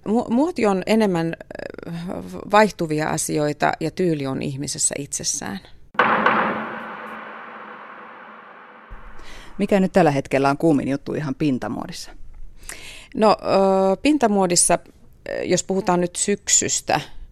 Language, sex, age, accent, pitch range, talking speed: Finnish, female, 30-49, native, 145-180 Hz, 85 wpm